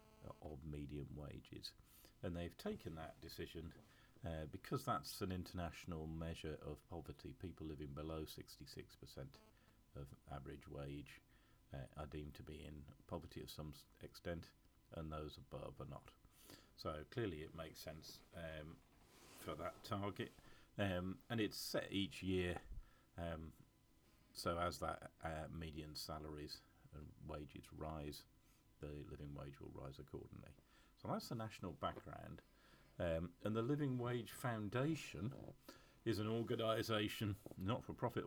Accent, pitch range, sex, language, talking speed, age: British, 75-105 Hz, male, English, 130 wpm, 40-59